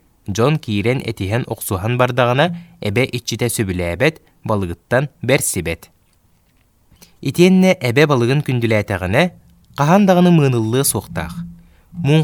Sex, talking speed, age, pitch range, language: male, 110 wpm, 20-39, 105-155 Hz, Russian